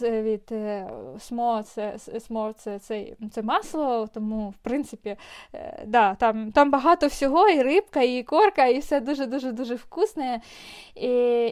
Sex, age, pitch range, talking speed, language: female, 20-39, 230-290 Hz, 125 wpm, Ukrainian